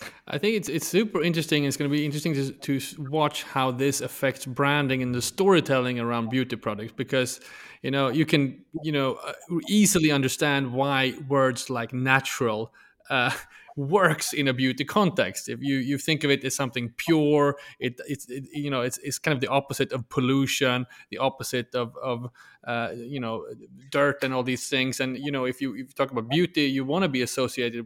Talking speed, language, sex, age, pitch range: 200 wpm, English, male, 30-49, 125-150 Hz